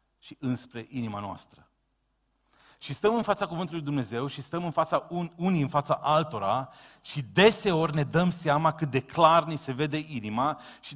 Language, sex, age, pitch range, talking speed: Romanian, male, 40-59, 115-170 Hz, 170 wpm